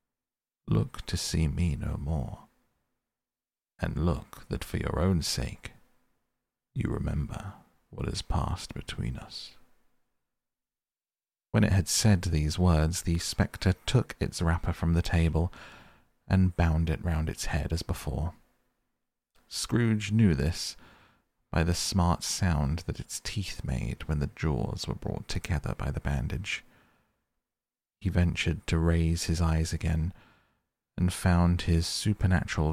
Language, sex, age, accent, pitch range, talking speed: English, male, 40-59, British, 80-95 Hz, 135 wpm